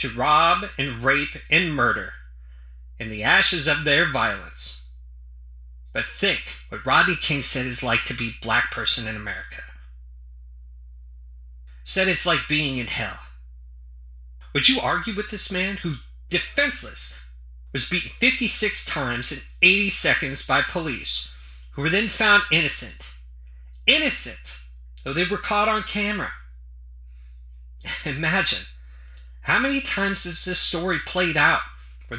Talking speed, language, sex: 130 wpm, English, male